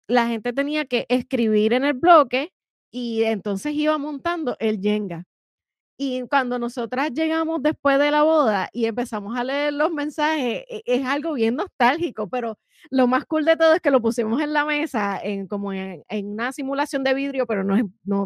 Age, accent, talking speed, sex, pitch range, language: 20-39, American, 185 wpm, female, 215-290 Hz, Spanish